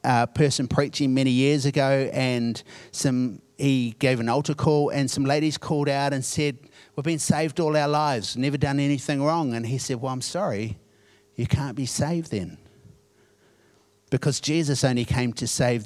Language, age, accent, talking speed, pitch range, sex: English, 50-69, Australian, 180 wpm, 110-145 Hz, male